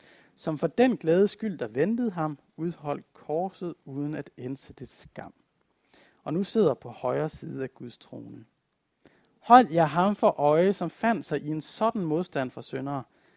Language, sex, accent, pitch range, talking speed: Danish, male, native, 145-200 Hz, 170 wpm